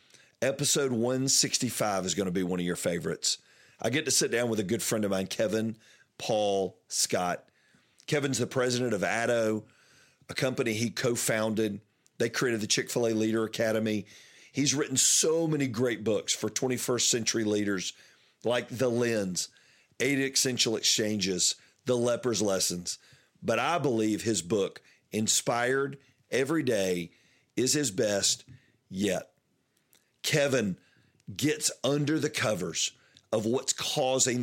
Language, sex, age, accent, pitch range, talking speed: English, male, 50-69, American, 105-135 Hz, 135 wpm